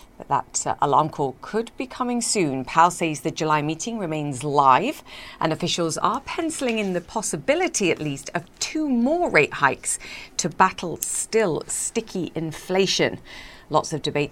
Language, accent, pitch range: English, British, 150-210 Hz